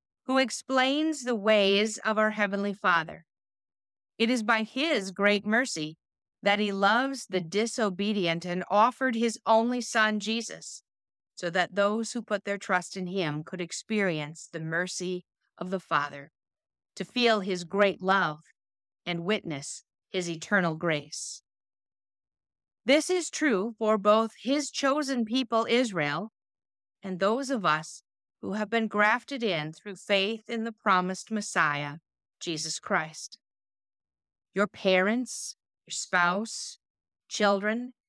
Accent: American